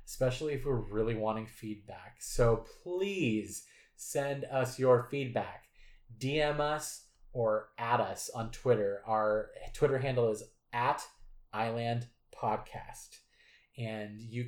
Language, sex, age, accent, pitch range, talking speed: English, male, 20-39, American, 110-140 Hz, 115 wpm